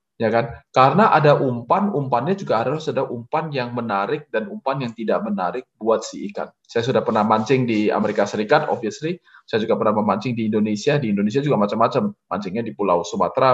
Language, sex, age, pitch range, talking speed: Indonesian, male, 20-39, 115-160 Hz, 185 wpm